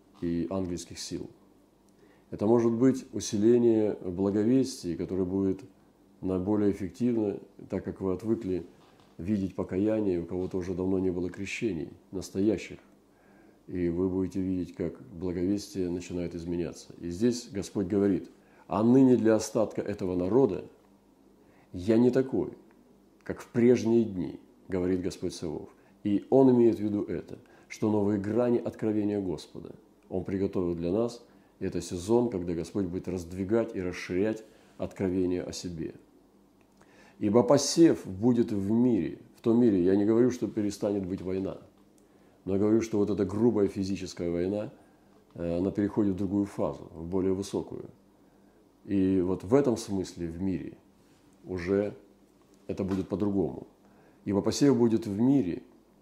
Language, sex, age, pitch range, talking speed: Russian, male, 40-59, 95-110 Hz, 135 wpm